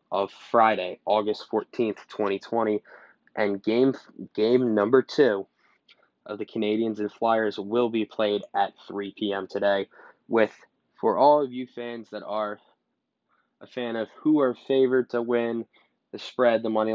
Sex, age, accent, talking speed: male, 10-29, American, 150 wpm